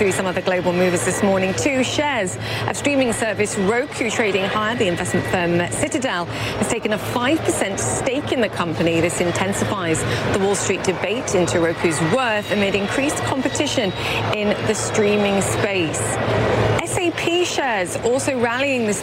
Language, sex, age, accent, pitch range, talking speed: English, female, 30-49, British, 170-215 Hz, 150 wpm